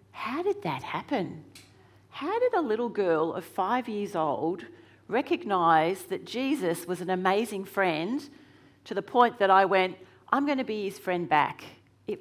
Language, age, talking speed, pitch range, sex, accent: English, 40-59, 165 wpm, 140-200 Hz, female, Australian